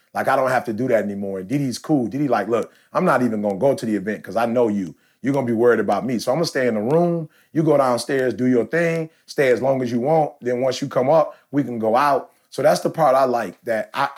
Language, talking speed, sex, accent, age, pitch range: English, 295 wpm, male, American, 30-49, 120-155 Hz